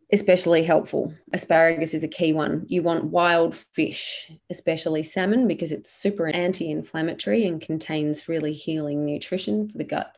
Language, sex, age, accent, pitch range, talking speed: English, female, 20-39, Australian, 155-180 Hz, 145 wpm